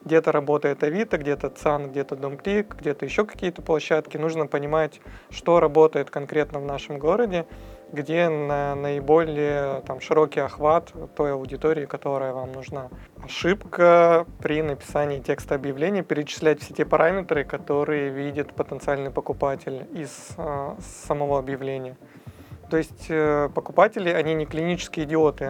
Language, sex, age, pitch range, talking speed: Russian, male, 20-39, 145-165 Hz, 125 wpm